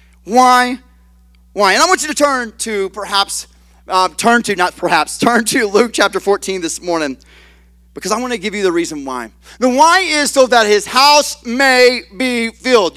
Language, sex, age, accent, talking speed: English, male, 30-49, American, 190 wpm